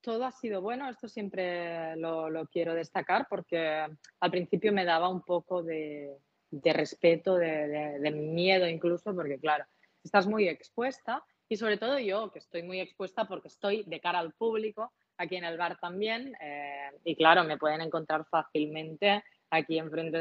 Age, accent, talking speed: 20-39, Spanish, 170 wpm